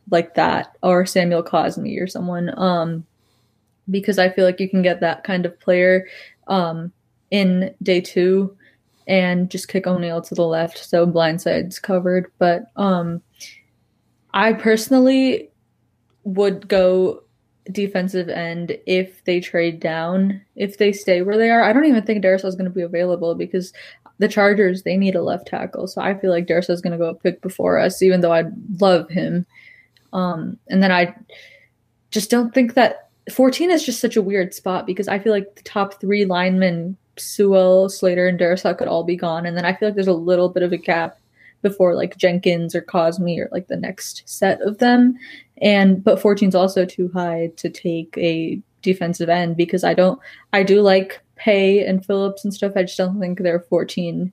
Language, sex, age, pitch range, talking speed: English, female, 20-39, 175-200 Hz, 190 wpm